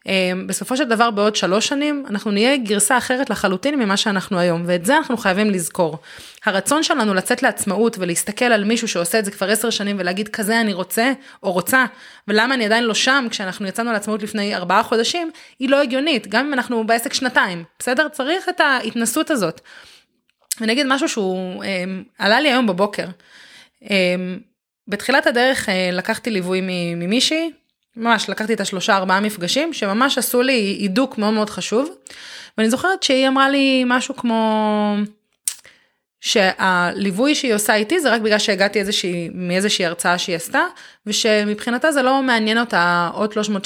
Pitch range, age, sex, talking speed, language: 190-260 Hz, 20-39, female, 160 wpm, Hebrew